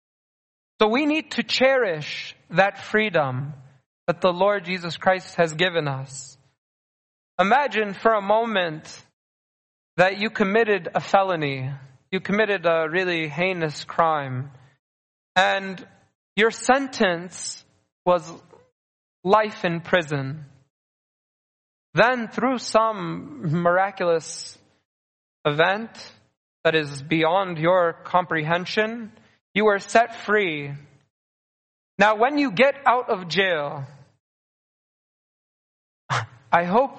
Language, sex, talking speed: English, male, 95 wpm